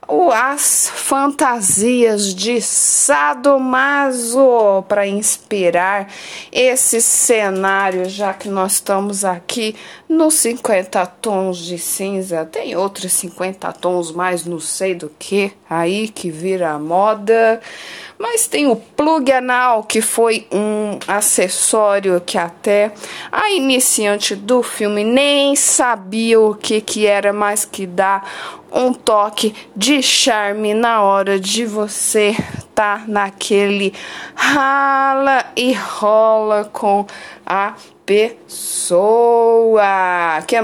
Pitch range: 195-235 Hz